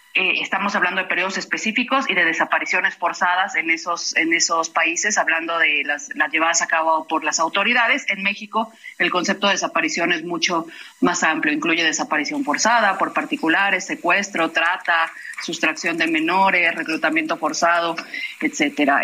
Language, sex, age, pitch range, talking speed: Spanish, female, 30-49, 165-200 Hz, 150 wpm